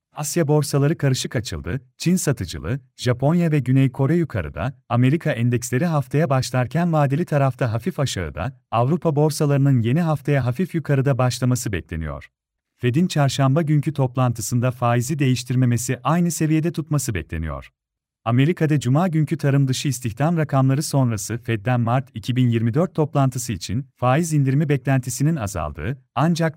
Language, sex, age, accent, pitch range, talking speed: Turkish, male, 40-59, native, 125-150 Hz, 125 wpm